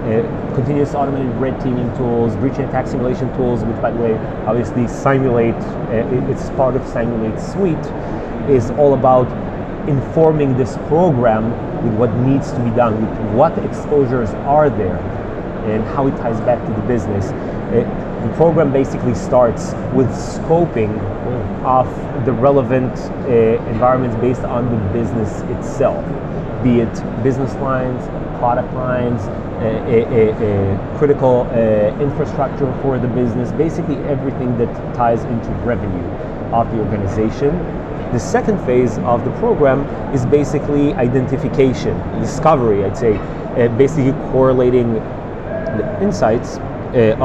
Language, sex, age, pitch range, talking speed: English, male, 30-49, 115-135 Hz, 135 wpm